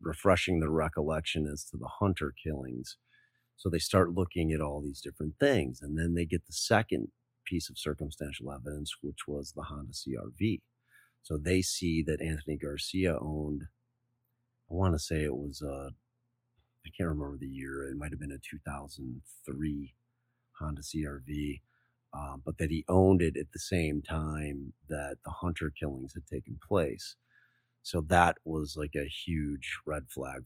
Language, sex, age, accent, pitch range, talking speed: English, male, 40-59, American, 70-90 Hz, 160 wpm